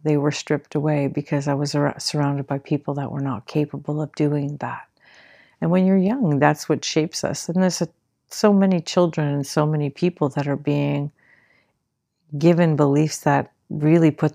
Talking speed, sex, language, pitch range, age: 175 wpm, female, English, 140-155 Hz, 50-69